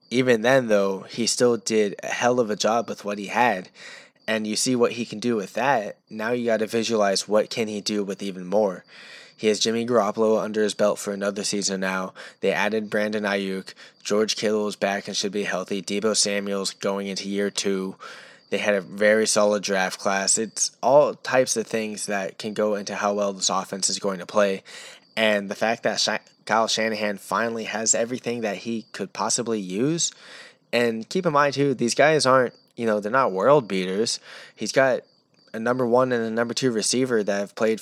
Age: 10-29